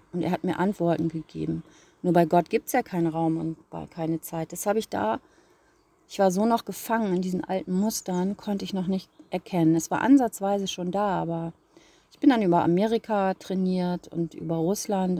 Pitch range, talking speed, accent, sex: 170-195 Hz, 195 wpm, German, female